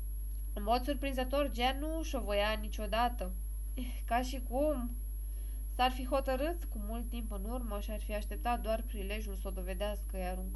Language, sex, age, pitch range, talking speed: English, female, 20-39, 175-230 Hz, 160 wpm